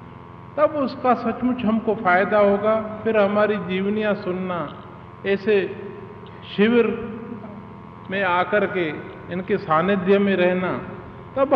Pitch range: 190-230 Hz